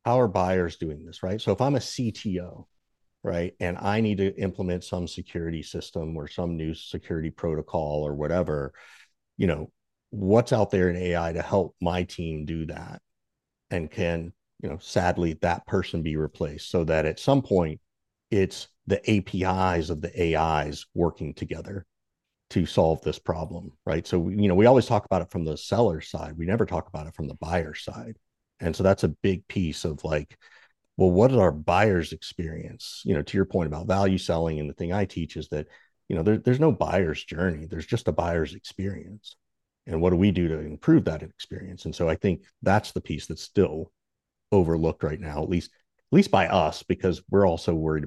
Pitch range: 80-95 Hz